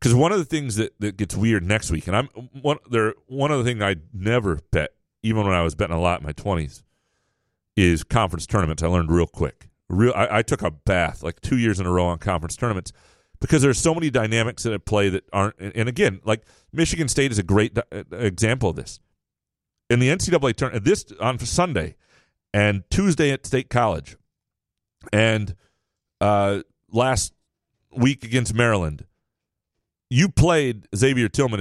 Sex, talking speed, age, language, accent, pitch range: male, 185 wpm, 40-59, English, American, 90-125 Hz